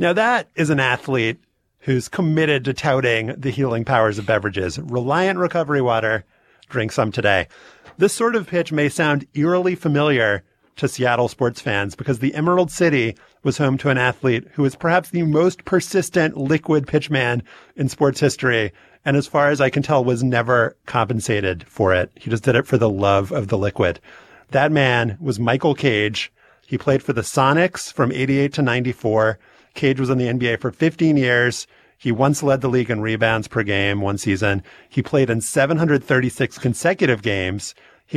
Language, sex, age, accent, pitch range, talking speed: English, male, 30-49, American, 115-145 Hz, 180 wpm